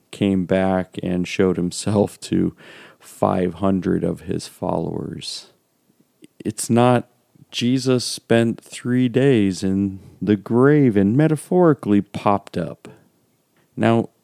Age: 40-59